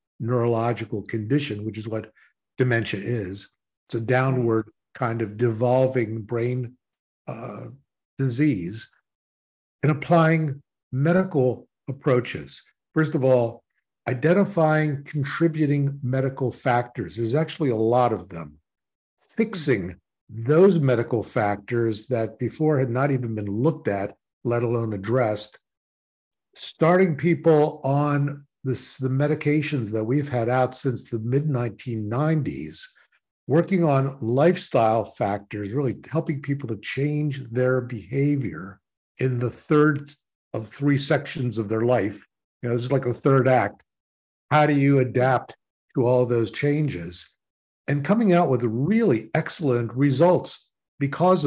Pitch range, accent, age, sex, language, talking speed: 115-150 Hz, American, 50-69, male, English, 120 wpm